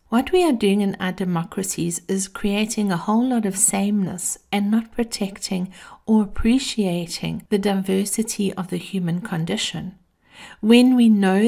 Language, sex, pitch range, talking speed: English, female, 185-225 Hz, 145 wpm